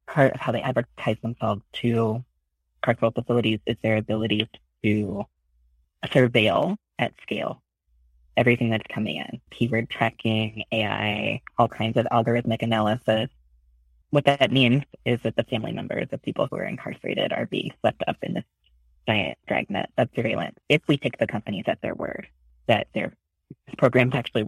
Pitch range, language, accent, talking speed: 95-125 Hz, English, American, 155 wpm